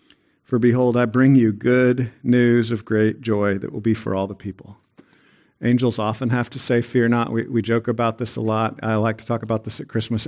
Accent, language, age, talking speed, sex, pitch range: American, English, 50-69, 230 wpm, male, 115-150 Hz